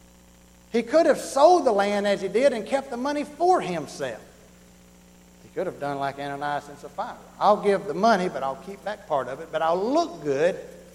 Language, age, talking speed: English, 60-79, 210 wpm